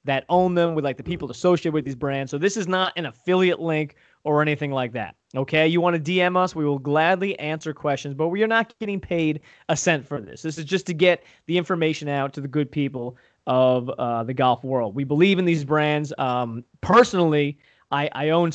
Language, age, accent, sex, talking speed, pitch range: English, 20-39, American, male, 225 wpm, 135-175 Hz